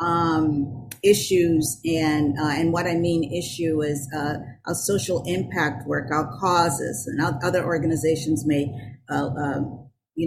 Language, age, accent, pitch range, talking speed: English, 50-69, American, 145-185 Hz, 140 wpm